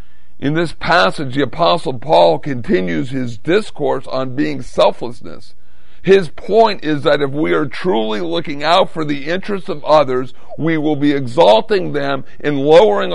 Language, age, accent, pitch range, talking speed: English, 50-69, American, 110-155 Hz, 155 wpm